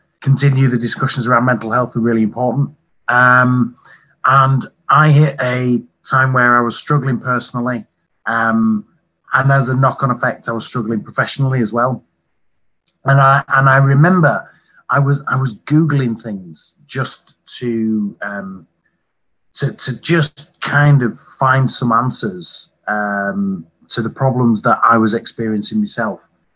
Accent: British